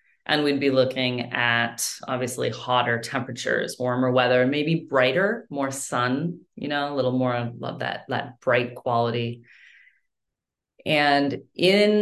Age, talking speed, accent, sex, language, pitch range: 30-49, 130 wpm, American, female, English, 125-150 Hz